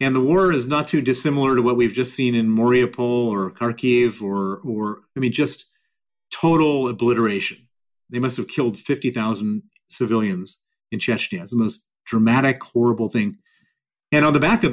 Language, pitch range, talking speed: English, 120-170 Hz, 165 wpm